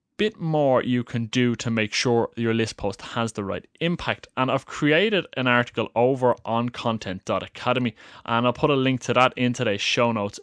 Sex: male